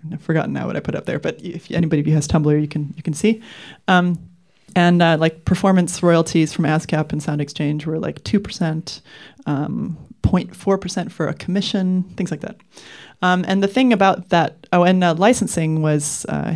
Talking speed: 190 wpm